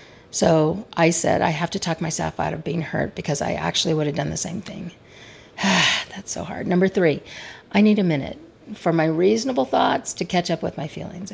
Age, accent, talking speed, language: 40-59, American, 210 wpm, English